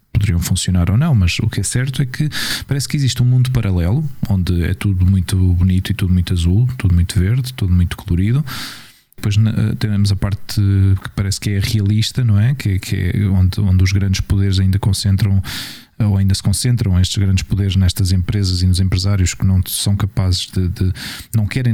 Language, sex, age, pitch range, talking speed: Portuguese, male, 20-39, 95-120 Hz, 195 wpm